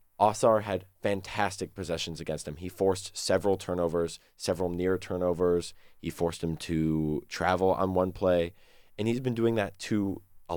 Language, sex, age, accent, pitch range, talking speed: English, male, 20-39, American, 85-100 Hz, 160 wpm